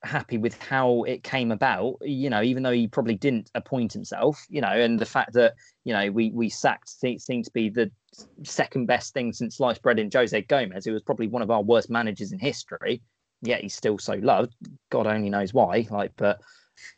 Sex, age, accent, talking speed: male, 20-39, British, 210 wpm